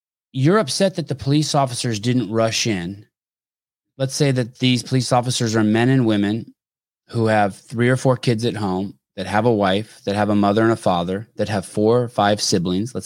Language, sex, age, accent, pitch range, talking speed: English, male, 30-49, American, 100-130 Hz, 205 wpm